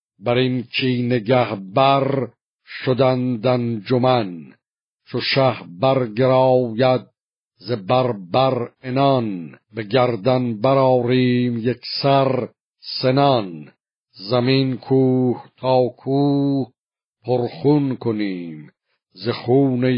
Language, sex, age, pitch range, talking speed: Persian, male, 50-69, 120-135 Hz, 80 wpm